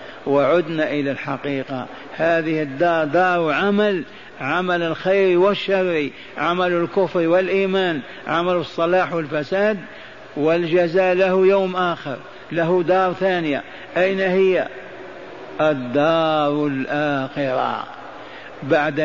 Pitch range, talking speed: 150-180 Hz, 90 wpm